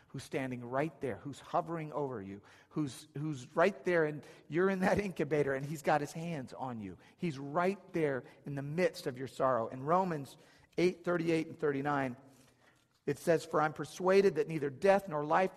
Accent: American